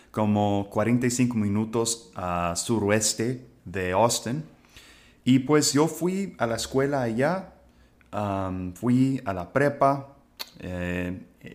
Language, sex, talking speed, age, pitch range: English, male, 110 wpm, 30-49, 95-120 Hz